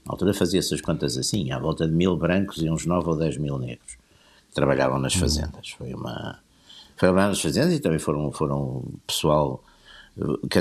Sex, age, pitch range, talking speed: male, 60-79, 75-95 Hz, 180 wpm